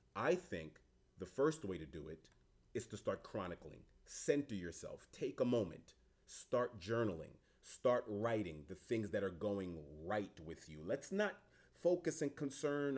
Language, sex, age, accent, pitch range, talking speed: English, male, 30-49, American, 90-130 Hz, 155 wpm